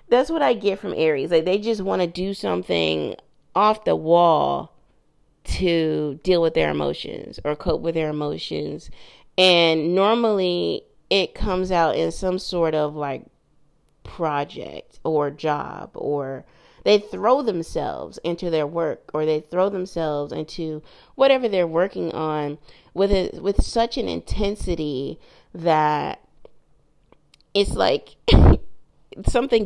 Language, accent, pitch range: English, American, 155-200 Hz